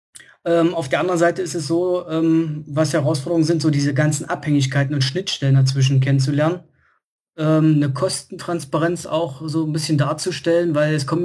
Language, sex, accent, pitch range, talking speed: German, male, German, 145-165 Hz, 165 wpm